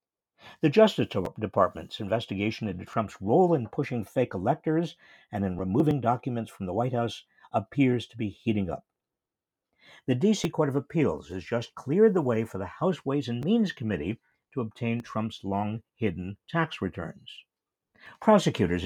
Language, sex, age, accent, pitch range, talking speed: English, male, 60-79, American, 105-160 Hz, 155 wpm